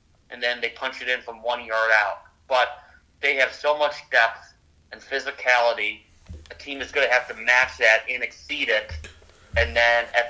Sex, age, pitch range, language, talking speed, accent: male, 30-49, 95-130 Hz, English, 190 wpm, American